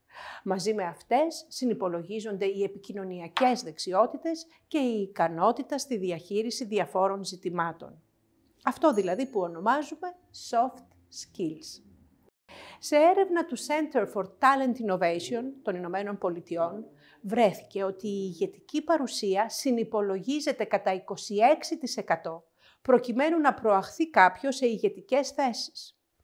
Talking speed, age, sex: 100 wpm, 50-69, female